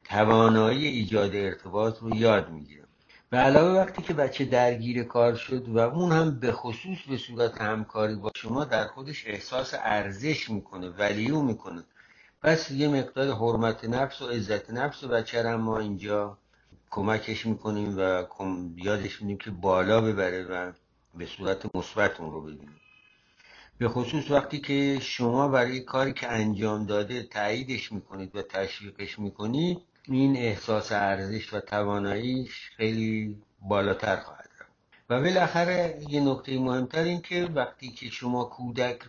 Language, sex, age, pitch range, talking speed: Persian, male, 60-79, 105-130 Hz, 140 wpm